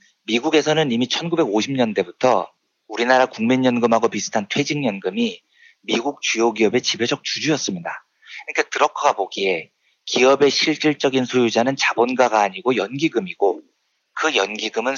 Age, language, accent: 40-59, Korean, native